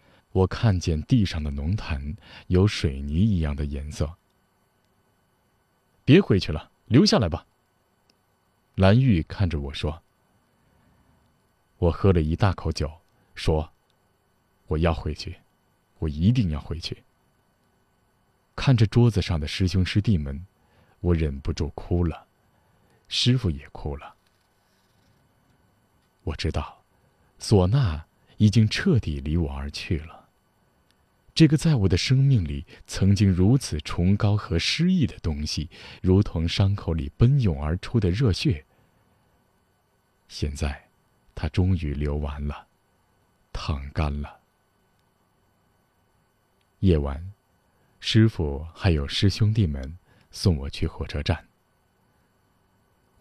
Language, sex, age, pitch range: Chinese, male, 20-39, 80-105 Hz